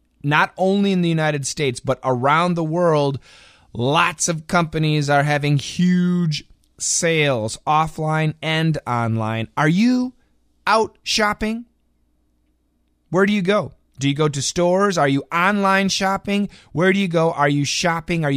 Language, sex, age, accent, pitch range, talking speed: English, male, 30-49, American, 95-160 Hz, 145 wpm